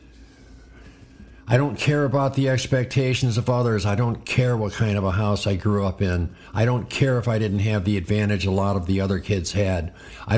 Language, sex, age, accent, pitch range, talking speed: English, male, 50-69, American, 100-125 Hz, 215 wpm